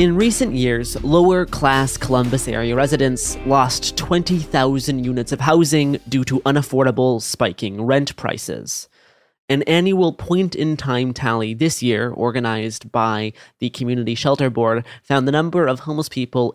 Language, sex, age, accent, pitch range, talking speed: English, male, 20-39, American, 120-150 Hz, 140 wpm